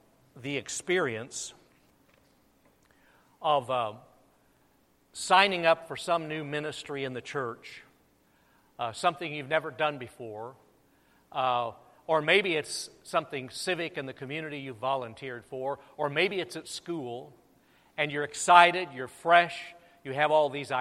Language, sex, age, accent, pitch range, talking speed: English, male, 50-69, American, 140-175 Hz, 130 wpm